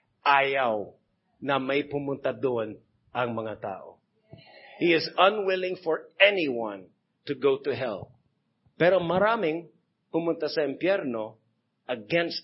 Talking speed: 110 wpm